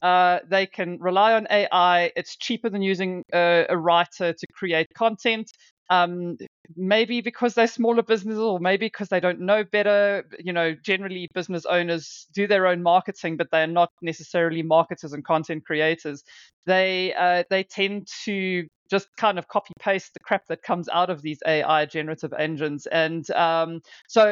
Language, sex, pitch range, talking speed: English, female, 160-195 Hz, 170 wpm